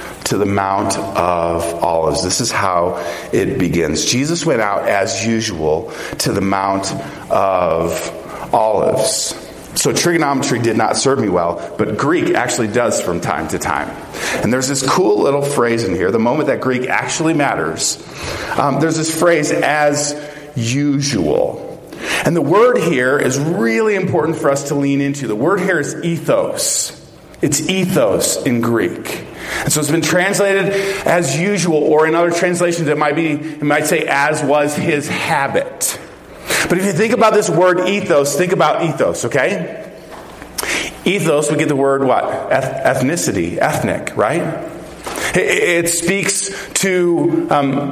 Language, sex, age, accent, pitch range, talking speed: English, male, 40-59, American, 135-175 Hz, 155 wpm